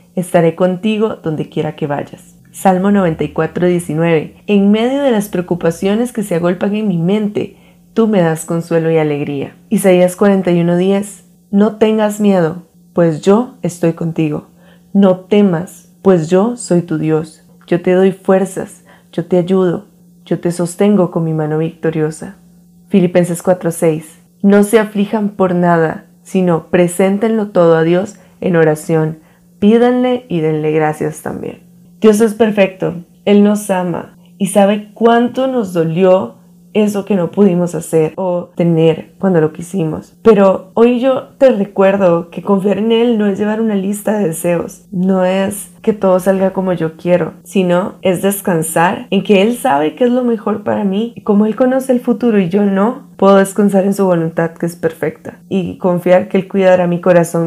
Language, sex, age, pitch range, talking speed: Spanish, female, 20-39, 170-205 Hz, 165 wpm